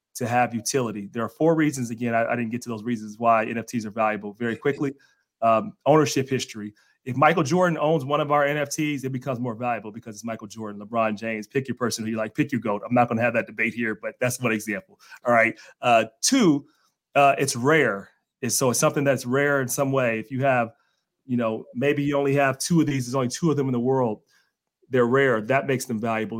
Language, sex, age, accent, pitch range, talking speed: English, male, 30-49, American, 115-140 Hz, 240 wpm